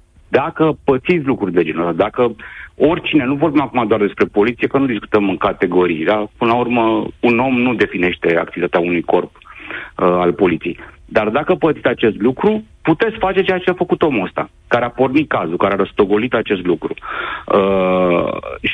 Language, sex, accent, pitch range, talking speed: Romanian, male, native, 105-150 Hz, 180 wpm